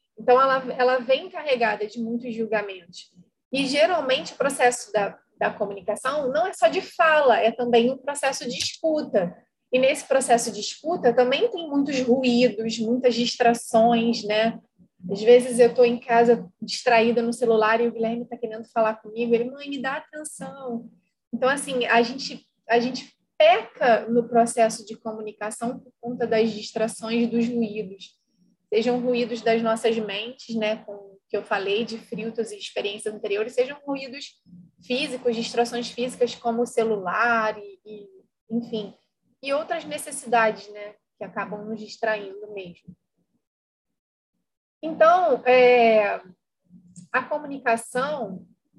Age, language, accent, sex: 20-39, Portuguese, Brazilian, female